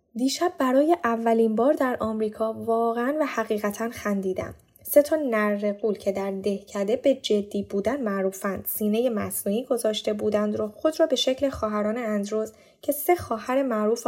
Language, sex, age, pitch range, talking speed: Persian, female, 10-29, 200-255 Hz, 155 wpm